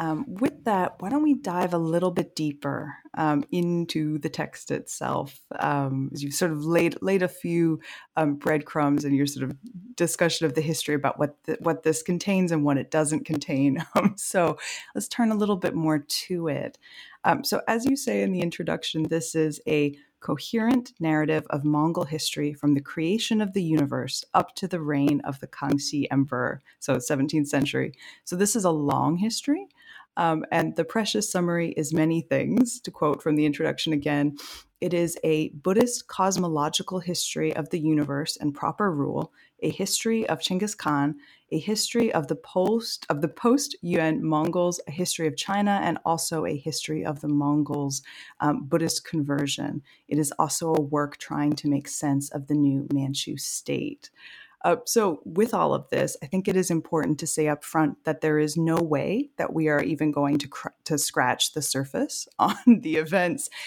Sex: female